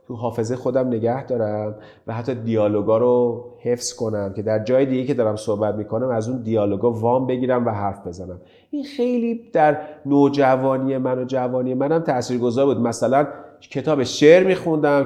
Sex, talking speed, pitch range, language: male, 165 wpm, 120-180 Hz, Persian